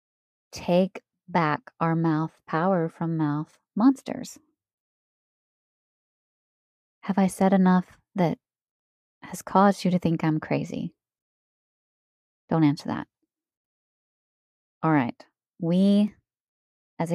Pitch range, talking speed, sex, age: 165-190 Hz, 85 wpm, female, 20-39